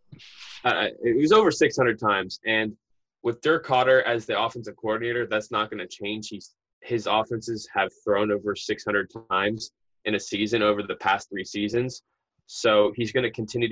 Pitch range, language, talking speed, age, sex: 105-120 Hz, English, 185 wpm, 20-39, male